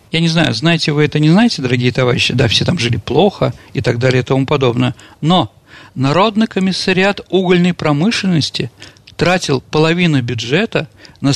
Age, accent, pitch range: 40-59, native, 120-155 Hz